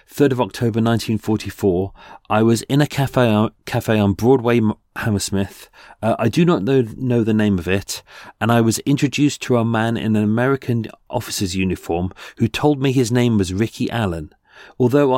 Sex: male